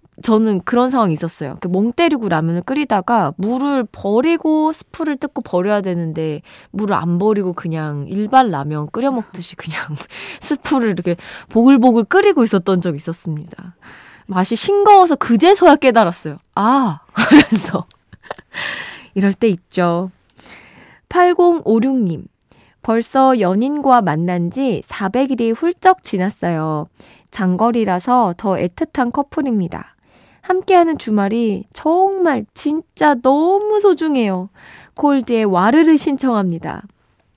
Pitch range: 185-265 Hz